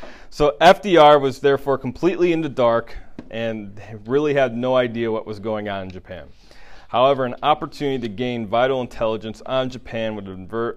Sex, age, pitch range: male, 30-49, 105-135 Hz